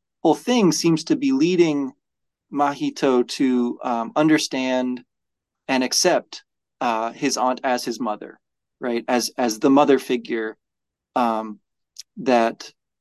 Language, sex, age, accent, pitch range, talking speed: English, male, 30-49, American, 120-150 Hz, 120 wpm